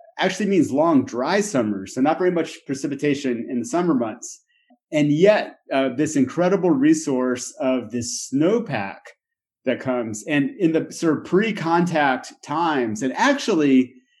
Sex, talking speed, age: male, 145 wpm, 30-49